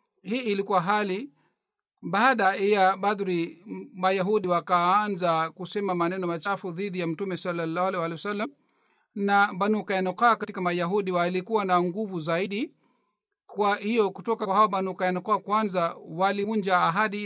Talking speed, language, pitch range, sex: 125 wpm, Swahili, 180-210 Hz, male